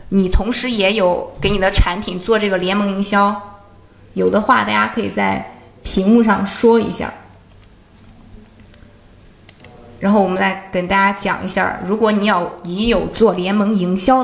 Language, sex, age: Chinese, female, 20-39